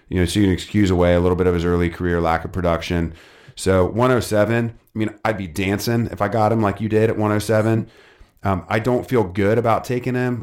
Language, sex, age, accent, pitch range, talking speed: English, male, 30-49, American, 95-115 Hz, 235 wpm